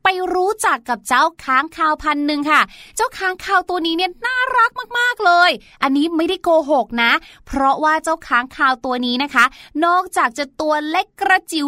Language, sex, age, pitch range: Thai, female, 20-39, 260-335 Hz